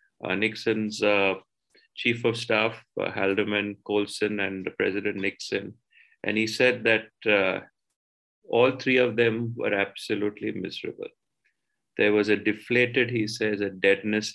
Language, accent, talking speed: English, Indian, 140 wpm